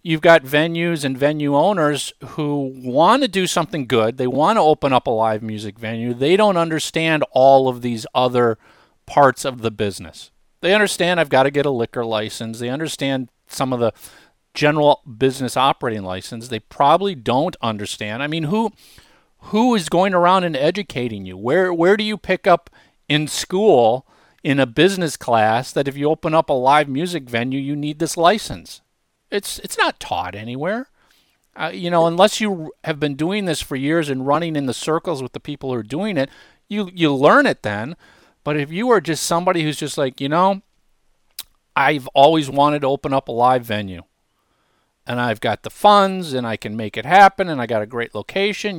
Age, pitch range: 40-59, 125-170 Hz